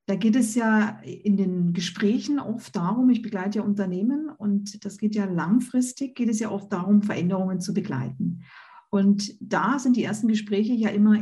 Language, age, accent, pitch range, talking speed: German, 50-69, German, 200-235 Hz, 180 wpm